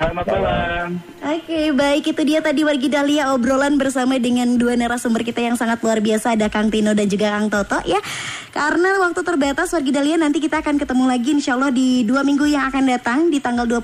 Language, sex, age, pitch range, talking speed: Indonesian, male, 20-39, 225-295 Hz, 195 wpm